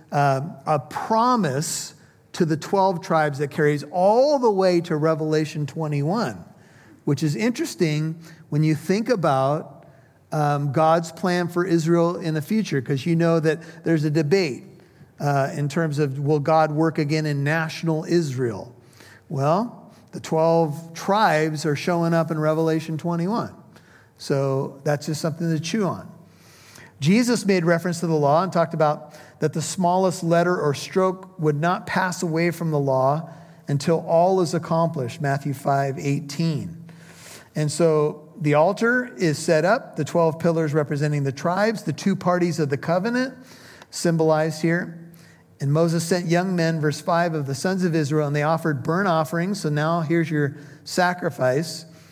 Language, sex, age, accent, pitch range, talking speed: English, male, 50-69, American, 150-175 Hz, 160 wpm